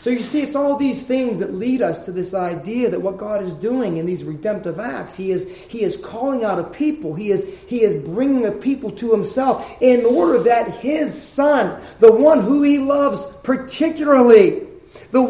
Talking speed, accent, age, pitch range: 190 wpm, American, 30-49, 175-245 Hz